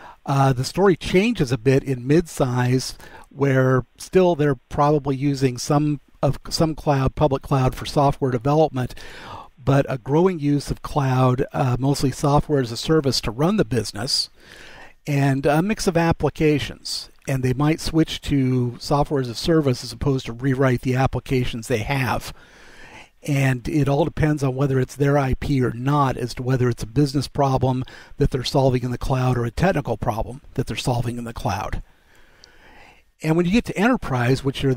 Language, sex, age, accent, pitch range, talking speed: English, male, 50-69, American, 125-150 Hz, 175 wpm